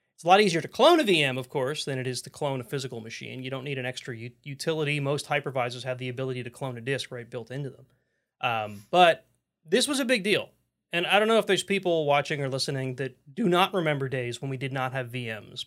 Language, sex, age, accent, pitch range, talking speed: English, male, 30-49, American, 130-165 Hz, 250 wpm